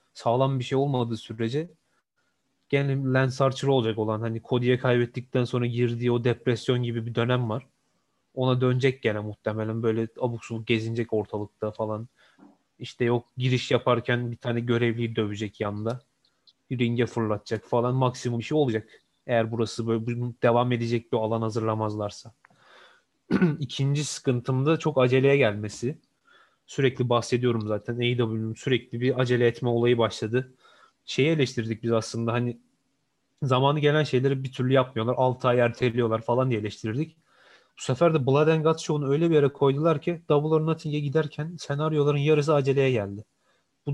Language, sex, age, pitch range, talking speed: Turkish, male, 30-49, 115-135 Hz, 145 wpm